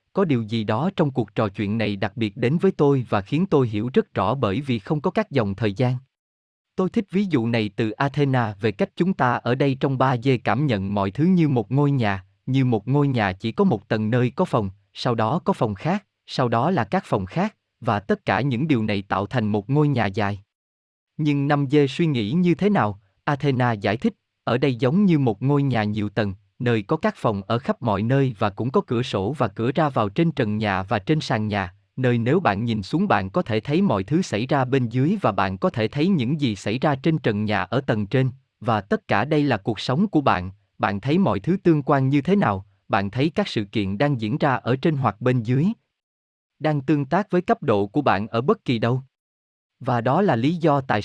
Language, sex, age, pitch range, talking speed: Vietnamese, male, 20-39, 105-150 Hz, 245 wpm